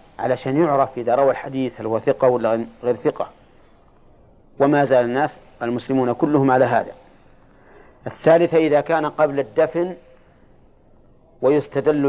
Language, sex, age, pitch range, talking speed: Arabic, male, 40-59, 125-150 Hz, 115 wpm